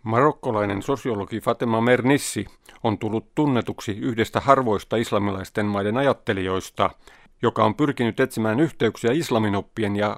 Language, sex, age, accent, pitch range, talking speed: Finnish, male, 50-69, native, 110-140 Hz, 110 wpm